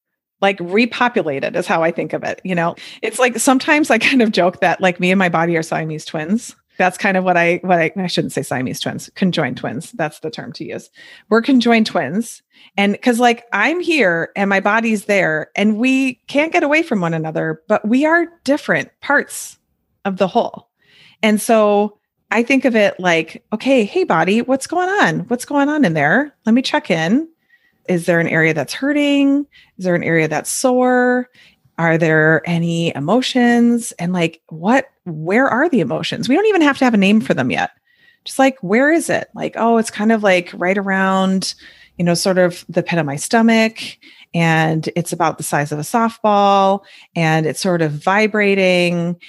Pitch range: 170-250 Hz